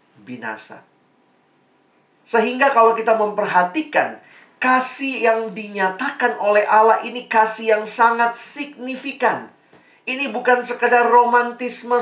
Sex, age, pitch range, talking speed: male, 40-59, 160-235 Hz, 95 wpm